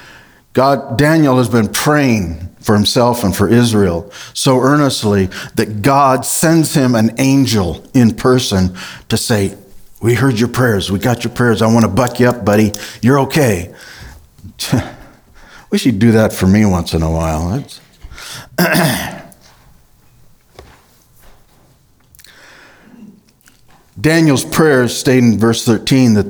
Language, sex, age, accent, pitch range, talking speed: English, male, 60-79, American, 100-135 Hz, 130 wpm